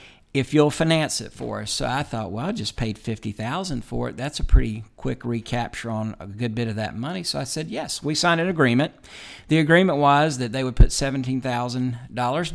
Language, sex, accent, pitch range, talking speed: English, male, American, 110-135 Hz, 210 wpm